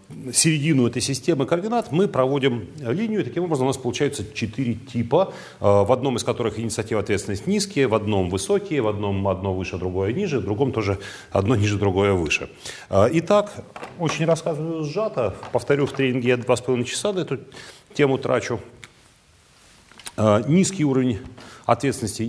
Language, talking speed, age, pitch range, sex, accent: Russian, 150 wpm, 40-59, 110-145 Hz, male, native